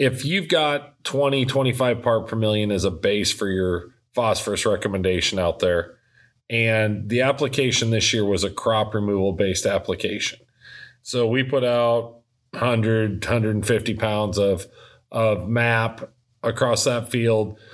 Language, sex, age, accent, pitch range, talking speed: English, male, 40-59, American, 110-130 Hz, 135 wpm